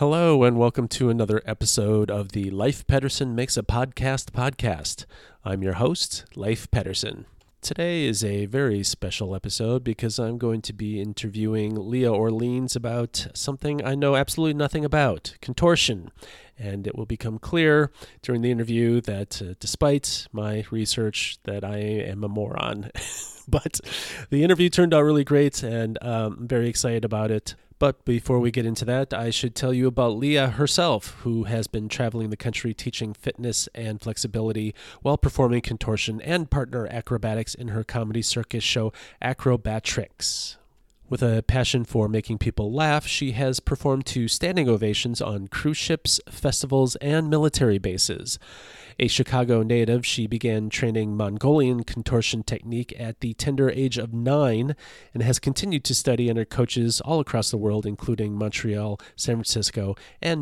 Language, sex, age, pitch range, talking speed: English, male, 30-49, 110-130 Hz, 160 wpm